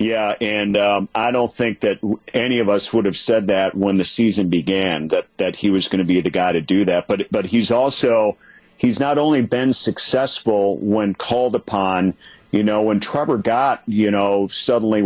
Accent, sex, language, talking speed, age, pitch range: American, male, English, 200 wpm, 50-69, 100-115 Hz